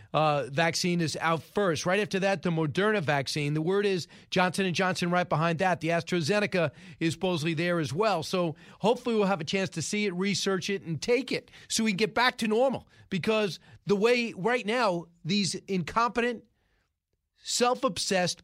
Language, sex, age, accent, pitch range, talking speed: English, male, 40-59, American, 160-195 Hz, 180 wpm